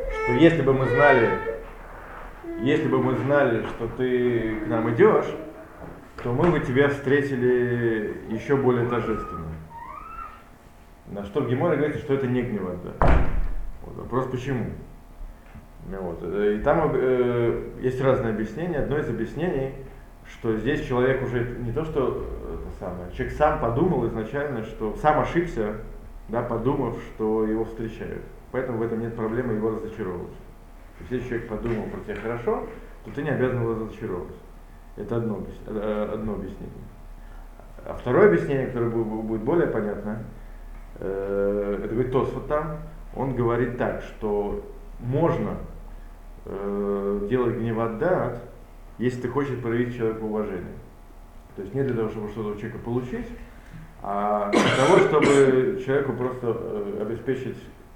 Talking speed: 130 wpm